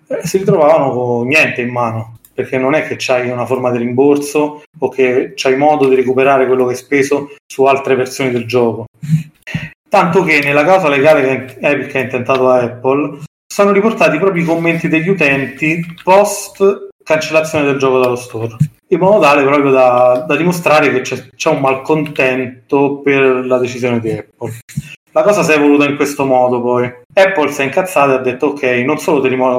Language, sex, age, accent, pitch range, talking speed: Italian, male, 30-49, native, 125-155 Hz, 185 wpm